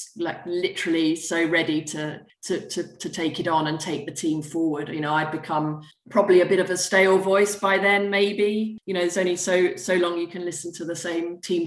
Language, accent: English, British